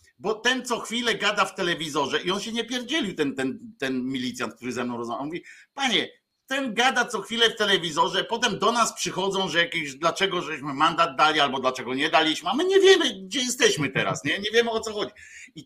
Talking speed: 220 wpm